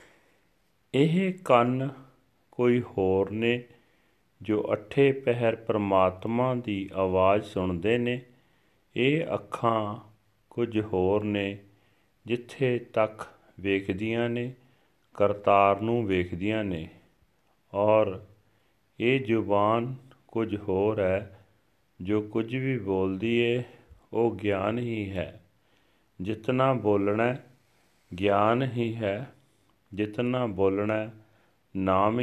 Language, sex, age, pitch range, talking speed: Punjabi, male, 40-59, 95-115 Hz, 90 wpm